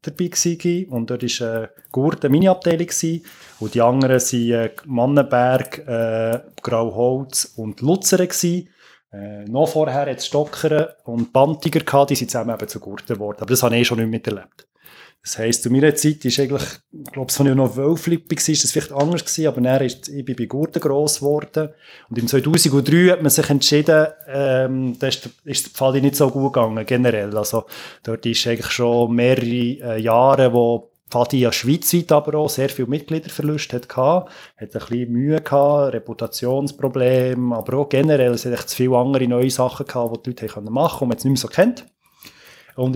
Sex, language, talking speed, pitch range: male, German, 180 wpm, 120-150 Hz